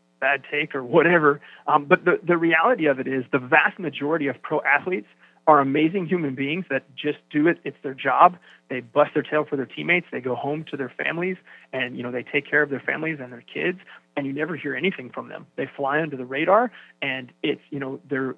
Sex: male